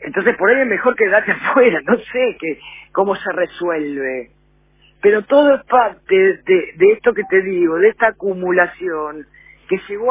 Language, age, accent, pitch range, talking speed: Spanish, 50-69, Argentinian, 170-250 Hz, 165 wpm